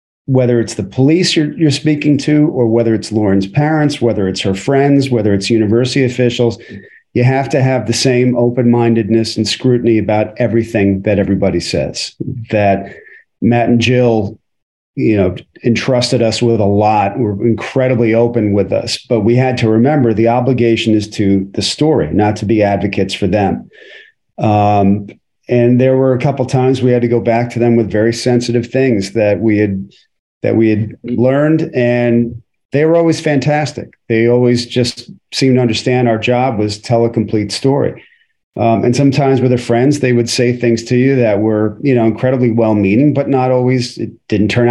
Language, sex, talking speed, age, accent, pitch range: English, male, 180 wpm, 40-59, American, 110-125 Hz